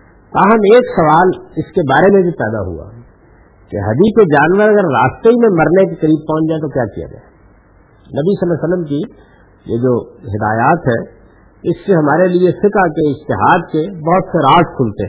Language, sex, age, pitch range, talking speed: Urdu, male, 50-69, 120-160 Hz, 190 wpm